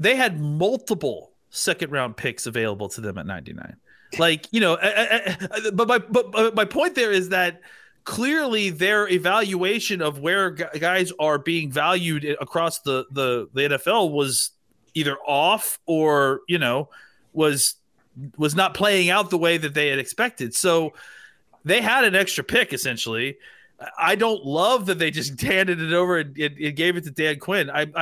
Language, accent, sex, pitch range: English, American, male, 135-180 Hz